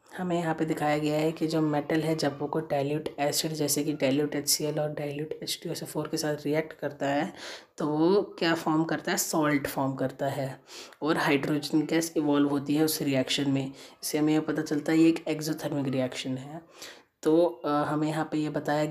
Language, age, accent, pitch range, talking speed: Hindi, 20-39, native, 145-160 Hz, 195 wpm